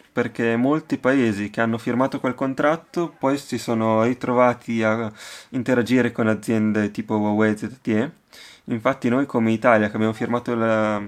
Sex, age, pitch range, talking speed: male, 20-39, 110-125 Hz, 145 wpm